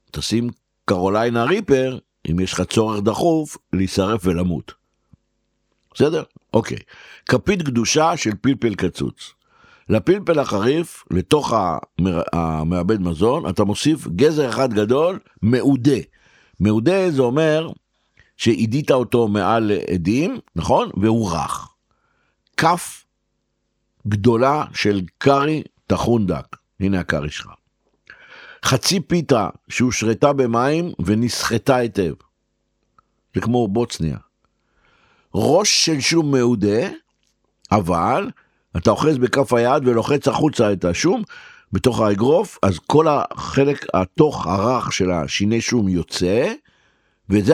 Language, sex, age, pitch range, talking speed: Hebrew, male, 60-79, 100-140 Hz, 100 wpm